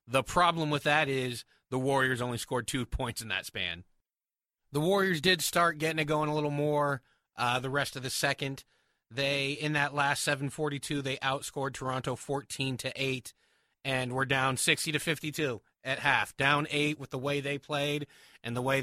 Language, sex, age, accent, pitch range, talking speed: English, male, 30-49, American, 125-150 Hz, 190 wpm